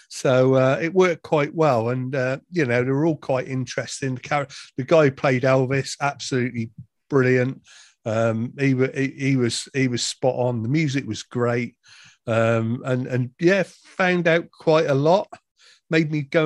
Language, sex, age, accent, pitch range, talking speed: English, male, 50-69, British, 125-145 Hz, 175 wpm